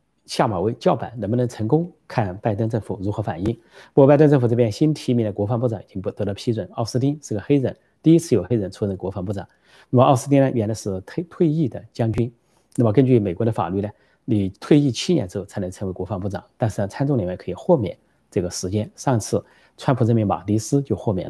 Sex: male